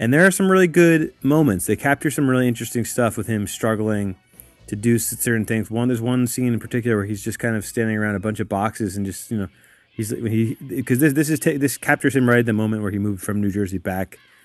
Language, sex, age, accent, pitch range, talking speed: English, male, 30-49, American, 95-120 Hz, 255 wpm